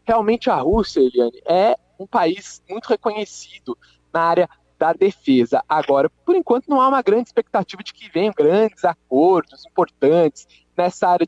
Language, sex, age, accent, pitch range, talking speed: Portuguese, male, 20-39, Brazilian, 140-195 Hz, 155 wpm